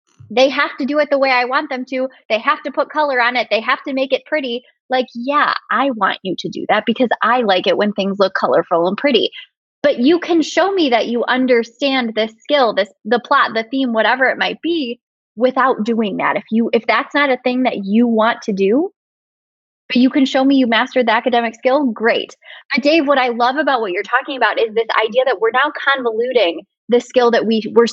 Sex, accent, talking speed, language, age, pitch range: female, American, 235 wpm, English, 20-39, 225-285 Hz